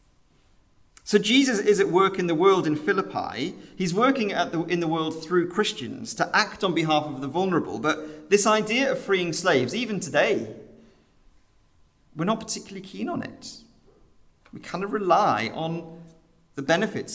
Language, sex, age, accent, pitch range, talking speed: English, male, 40-59, British, 125-185 Hz, 160 wpm